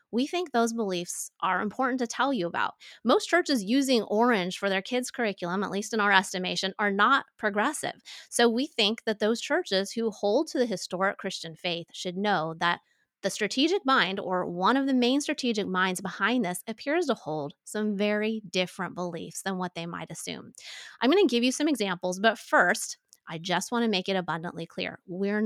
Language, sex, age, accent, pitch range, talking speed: English, female, 30-49, American, 185-240 Hz, 200 wpm